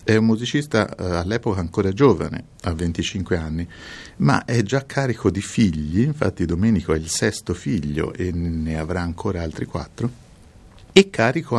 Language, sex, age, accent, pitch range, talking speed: Italian, male, 50-69, native, 80-110 Hz, 150 wpm